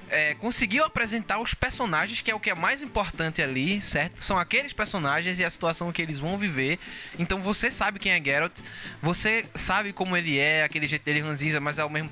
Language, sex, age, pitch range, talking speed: Portuguese, male, 20-39, 155-205 Hz, 210 wpm